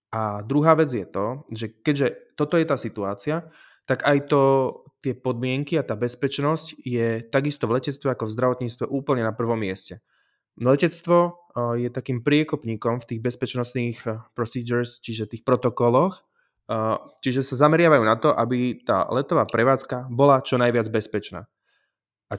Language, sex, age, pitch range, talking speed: Slovak, male, 20-39, 120-140 Hz, 145 wpm